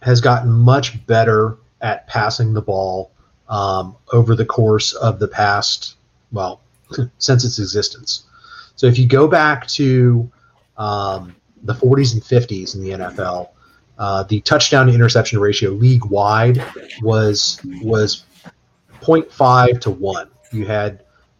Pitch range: 105-125 Hz